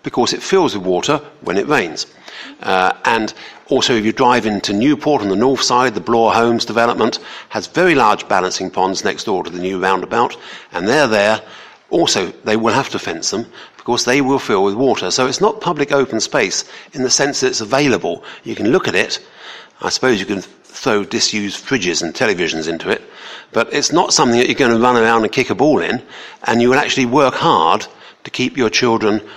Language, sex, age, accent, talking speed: English, male, 50-69, British, 215 wpm